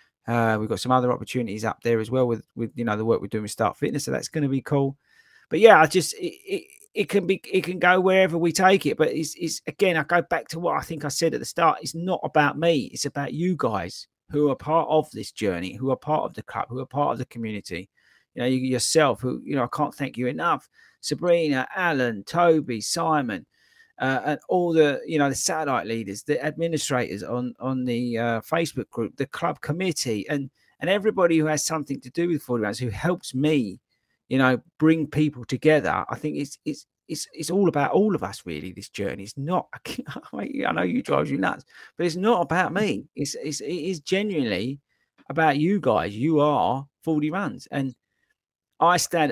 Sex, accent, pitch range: male, British, 125-170 Hz